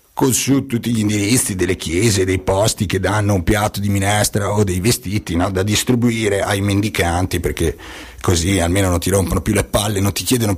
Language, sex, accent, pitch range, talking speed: Italian, male, native, 90-120 Hz, 195 wpm